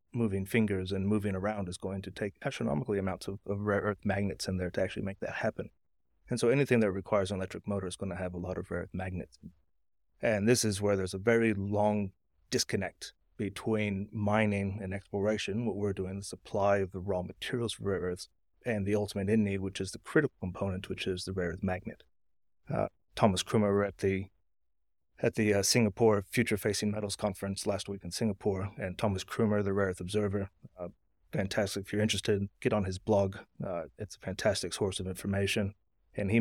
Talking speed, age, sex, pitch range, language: 205 wpm, 30-49, male, 95-105 Hz, English